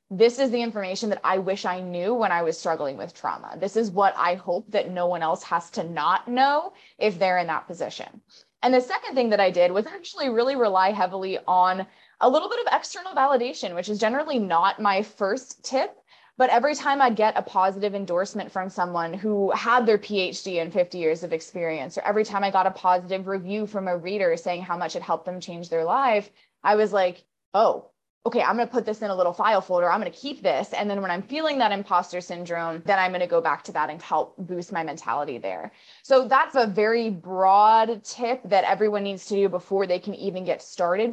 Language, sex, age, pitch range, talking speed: English, female, 20-39, 180-225 Hz, 230 wpm